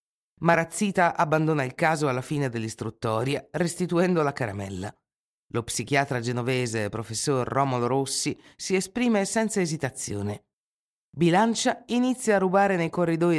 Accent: native